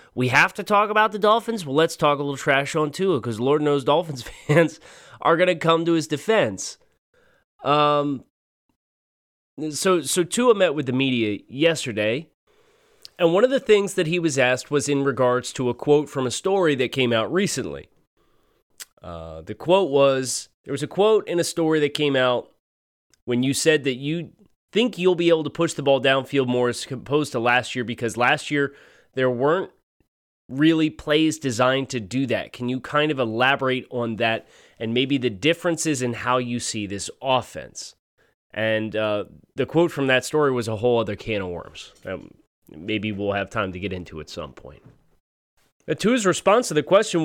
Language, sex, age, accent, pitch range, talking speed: English, male, 30-49, American, 125-165 Hz, 190 wpm